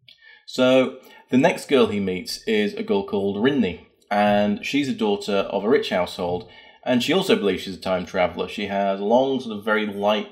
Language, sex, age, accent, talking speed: English, male, 30-49, British, 200 wpm